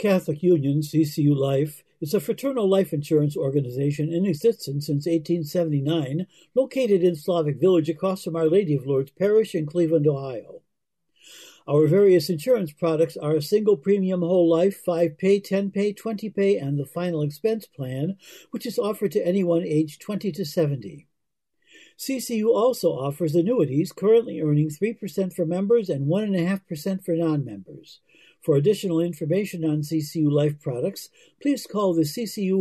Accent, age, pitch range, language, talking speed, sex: American, 60-79, 155-200 Hz, English, 150 wpm, male